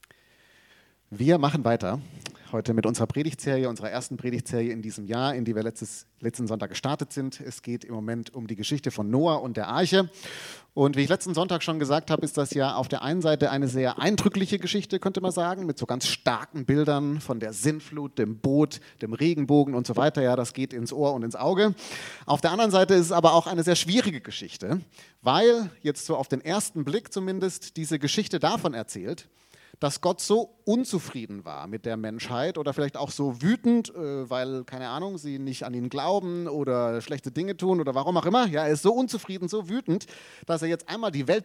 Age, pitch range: 30-49, 130-185 Hz